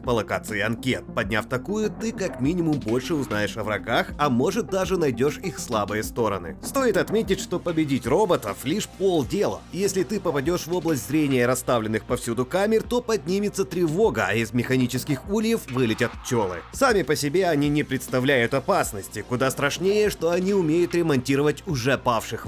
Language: Russian